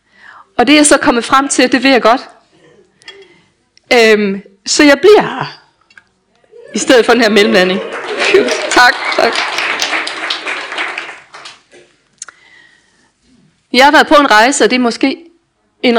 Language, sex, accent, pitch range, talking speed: Danish, female, native, 195-295 Hz, 130 wpm